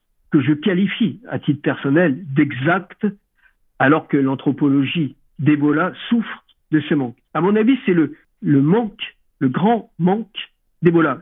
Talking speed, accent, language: 140 wpm, French, French